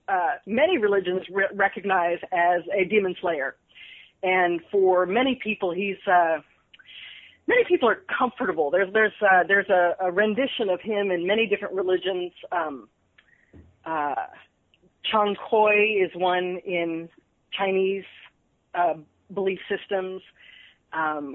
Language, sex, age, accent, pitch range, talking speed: English, female, 40-59, American, 185-230 Hz, 125 wpm